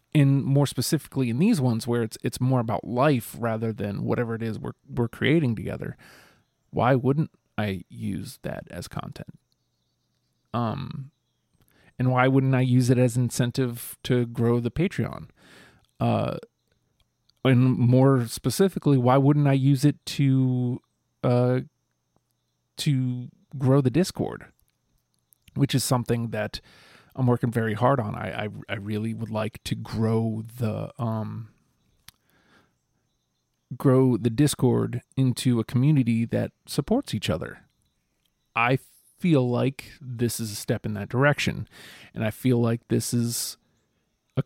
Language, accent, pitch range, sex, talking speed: English, American, 115-135 Hz, male, 140 wpm